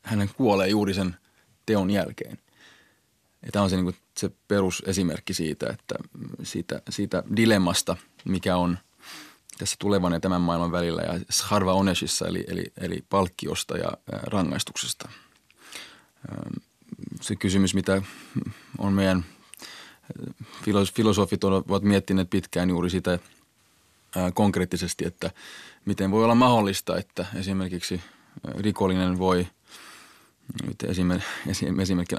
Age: 30-49